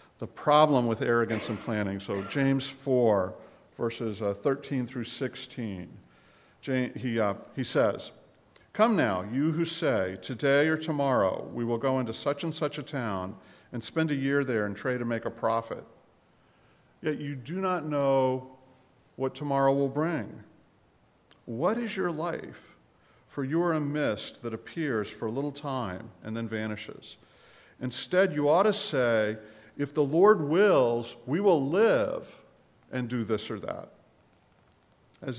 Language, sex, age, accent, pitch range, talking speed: English, male, 50-69, American, 110-150 Hz, 150 wpm